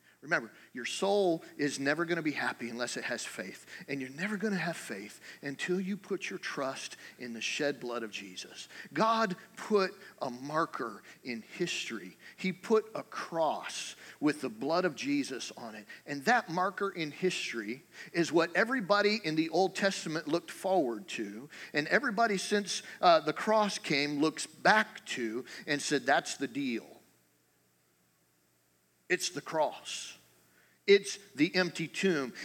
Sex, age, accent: male, 40-59, American